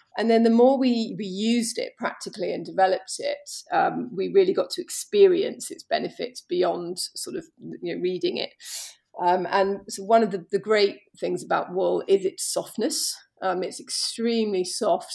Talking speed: 180 wpm